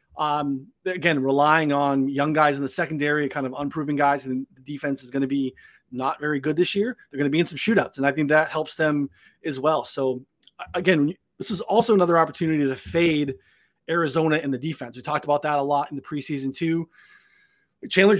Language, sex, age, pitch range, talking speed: English, male, 30-49, 135-175 Hz, 210 wpm